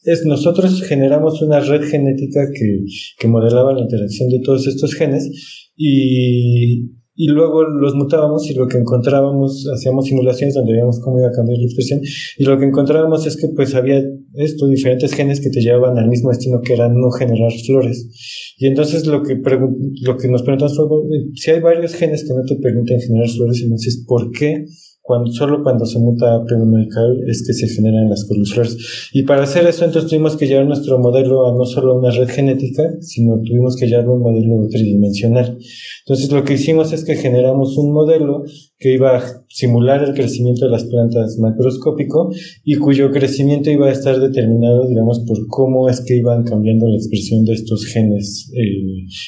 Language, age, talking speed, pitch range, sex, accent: Spanish, 20-39, 190 wpm, 120-145 Hz, male, Mexican